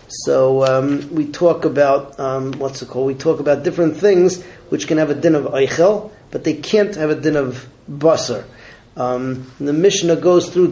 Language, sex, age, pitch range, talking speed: English, male, 30-49, 130-160 Hz, 190 wpm